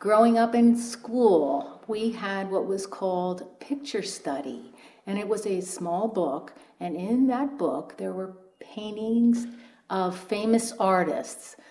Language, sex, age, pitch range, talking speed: English, female, 50-69, 170-220 Hz, 140 wpm